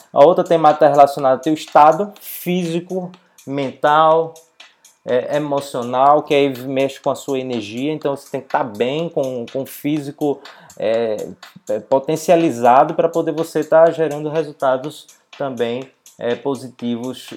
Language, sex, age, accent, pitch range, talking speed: Portuguese, male, 20-39, Brazilian, 135-165 Hz, 145 wpm